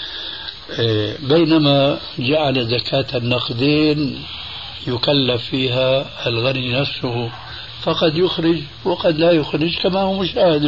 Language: Arabic